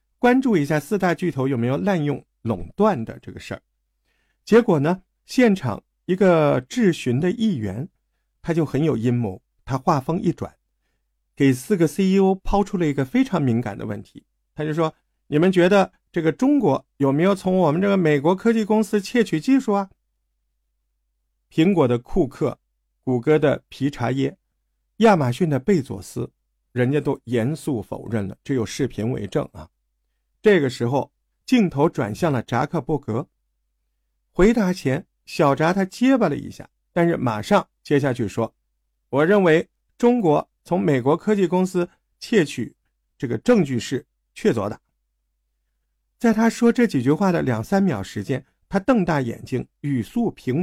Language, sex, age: Chinese, male, 50-69